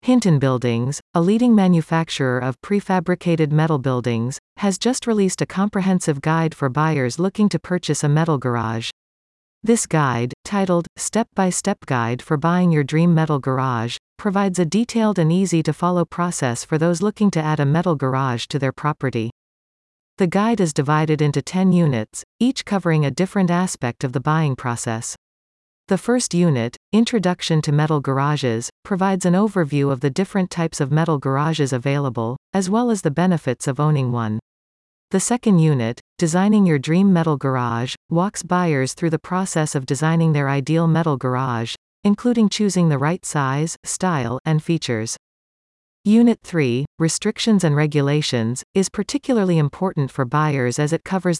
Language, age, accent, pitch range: English, 40-59, American, 135-185 Hz